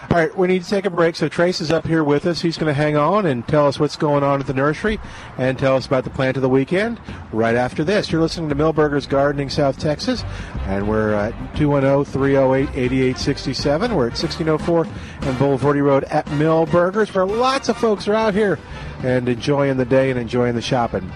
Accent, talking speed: American, 215 wpm